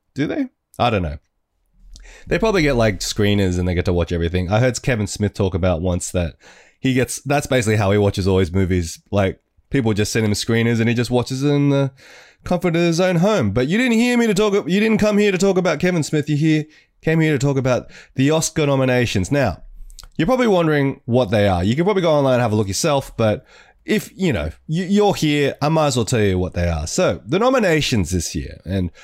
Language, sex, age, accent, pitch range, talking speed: English, male, 20-39, Australian, 95-150 Hz, 240 wpm